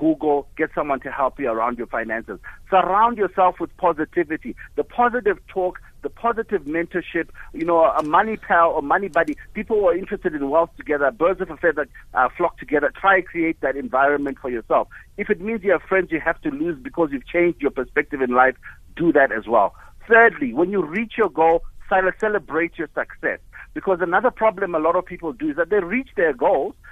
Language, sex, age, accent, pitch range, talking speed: English, male, 60-79, South African, 155-205 Hz, 205 wpm